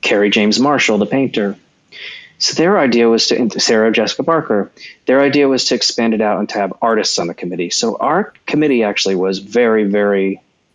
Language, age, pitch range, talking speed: English, 30-49, 100-115 Hz, 190 wpm